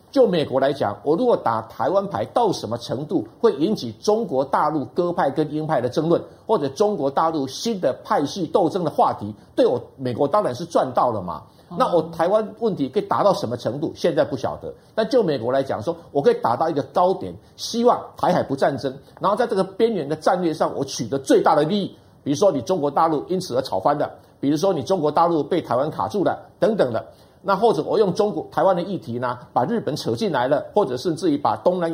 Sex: male